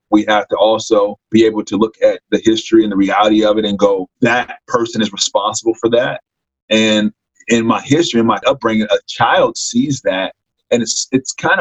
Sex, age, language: male, 30-49, English